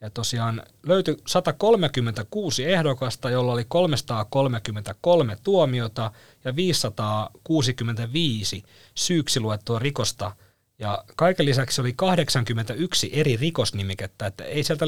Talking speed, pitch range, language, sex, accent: 95 wpm, 105-140 Hz, Finnish, male, native